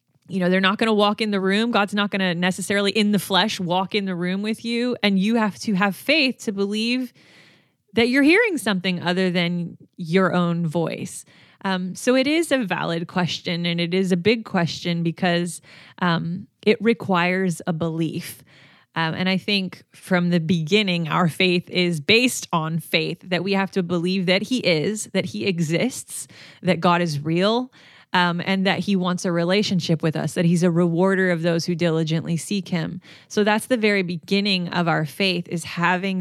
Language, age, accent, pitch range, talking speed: English, 20-39, American, 170-200 Hz, 195 wpm